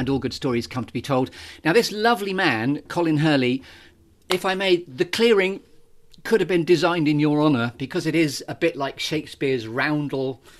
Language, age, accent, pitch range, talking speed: English, 40-59, British, 115-155 Hz, 195 wpm